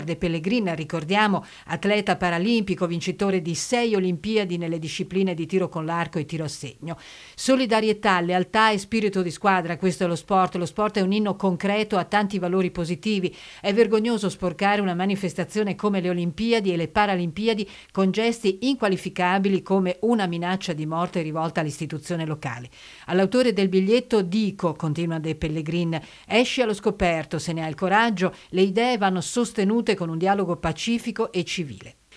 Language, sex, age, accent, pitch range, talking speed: Italian, female, 50-69, native, 175-215 Hz, 160 wpm